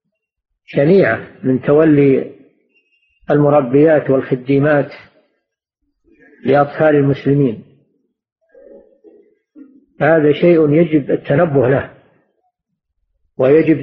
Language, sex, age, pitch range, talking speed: Arabic, male, 50-69, 140-180 Hz, 55 wpm